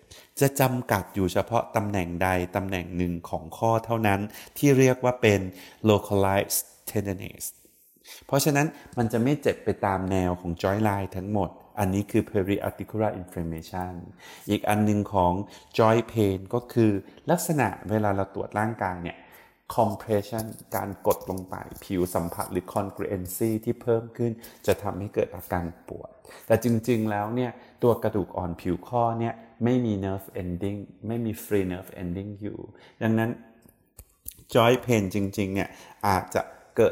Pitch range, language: 95-115 Hz, Thai